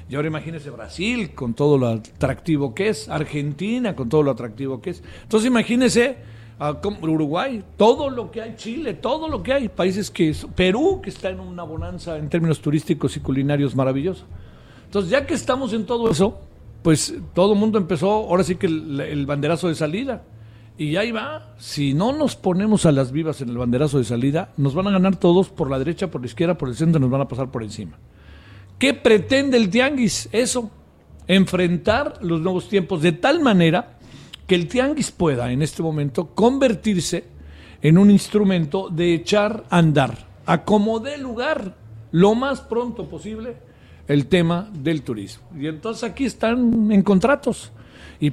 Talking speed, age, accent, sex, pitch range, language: 180 wpm, 50-69, Mexican, male, 140-215 Hz, Spanish